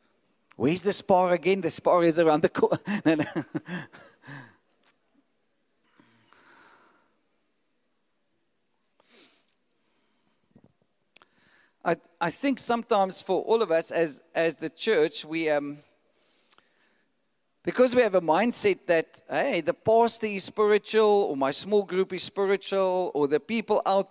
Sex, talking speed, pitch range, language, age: male, 110 wpm, 165-225 Hz, English, 50-69